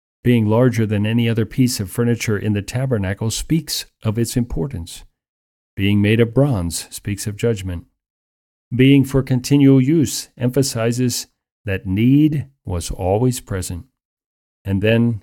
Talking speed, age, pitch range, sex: 135 wpm, 50-69, 95-125 Hz, male